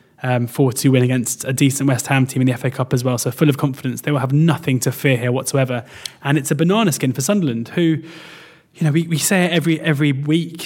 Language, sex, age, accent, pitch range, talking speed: English, male, 20-39, British, 130-145 Hz, 250 wpm